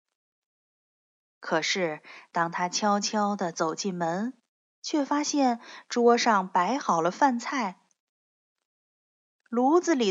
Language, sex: Chinese, female